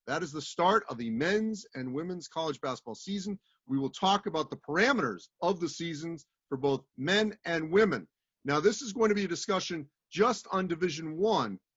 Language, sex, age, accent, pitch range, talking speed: English, male, 40-59, American, 135-180 Hz, 195 wpm